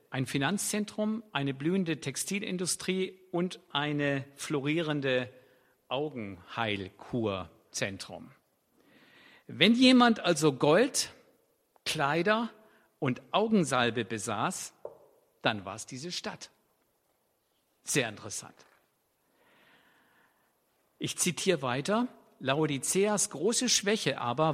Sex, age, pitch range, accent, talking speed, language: male, 50-69, 140-215 Hz, German, 75 wpm, German